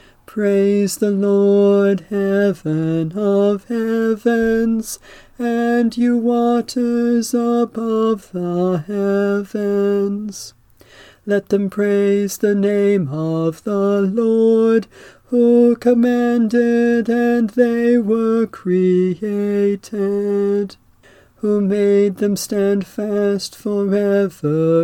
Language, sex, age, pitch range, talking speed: English, male, 40-59, 200-230 Hz, 75 wpm